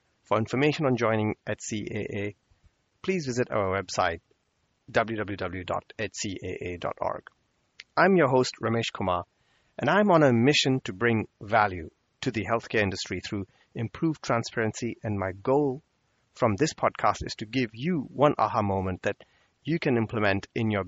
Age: 30-49